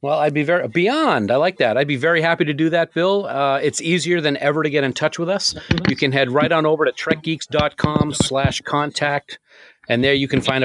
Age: 40-59